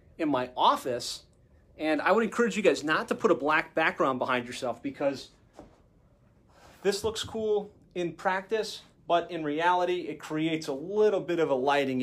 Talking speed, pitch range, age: 170 wpm, 145-180 Hz, 30-49